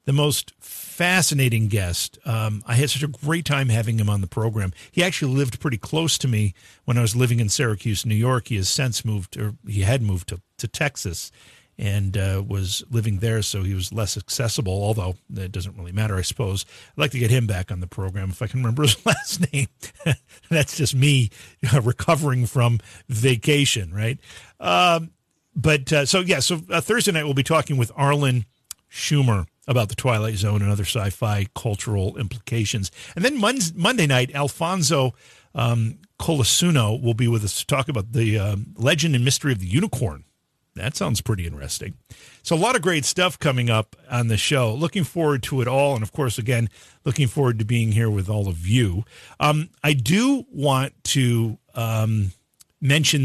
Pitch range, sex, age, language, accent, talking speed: 105-145 Hz, male, 50-69, English, American, 190 wpm